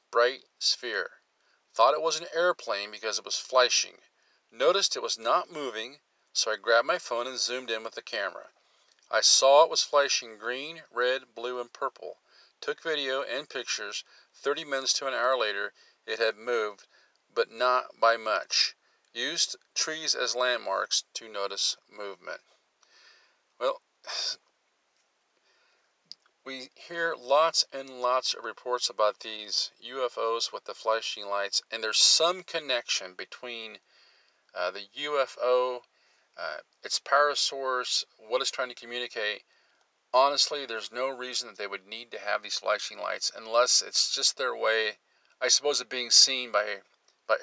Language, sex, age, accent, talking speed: English, male, 40-59, American, 150 wpm